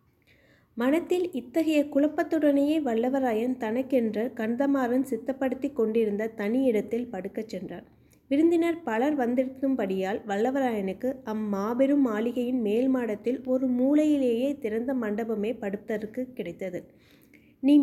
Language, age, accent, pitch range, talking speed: Tamil, 20-39, native, 210-260 Hz, 90 wpm